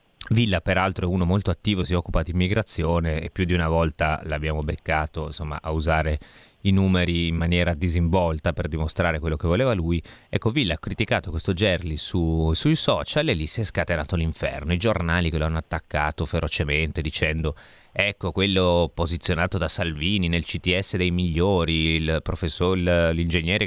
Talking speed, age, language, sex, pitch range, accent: 165 wpm, 30-49, Italian, male, 85-115 Hz, native